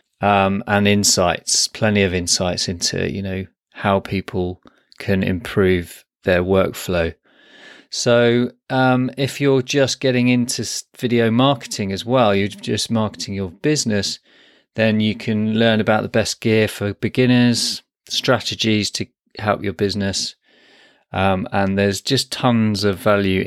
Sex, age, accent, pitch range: male, 30-49, British, 95-120 Hz